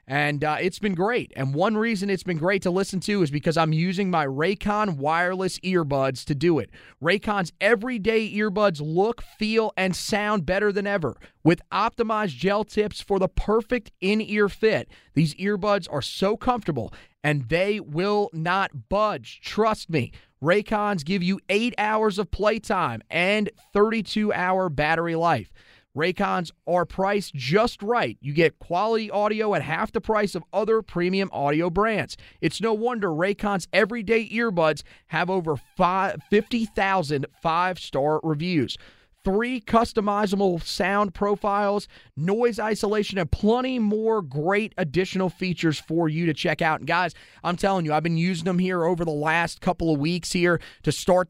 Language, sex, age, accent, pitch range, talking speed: English, male, 30-49, American, 165-205 Hz, 155 wpm